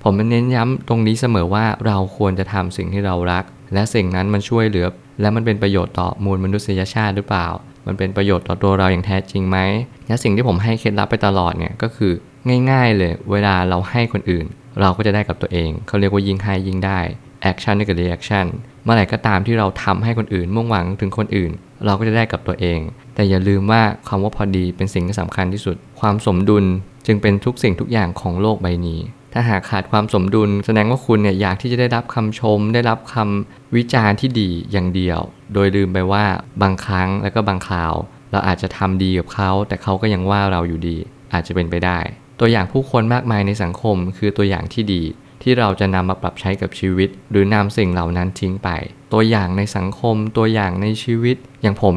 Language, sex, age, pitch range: Thai, male, 20-39, 95-115 Hz